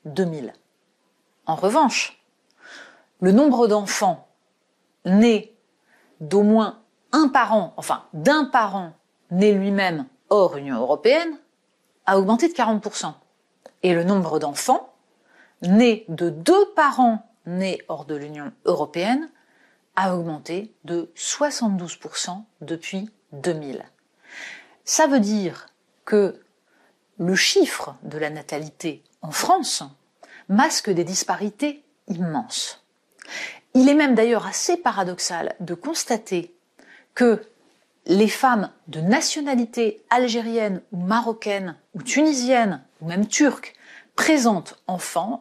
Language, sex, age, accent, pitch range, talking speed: French, female, 40-59, French, 180-270 Hz, 105 wpm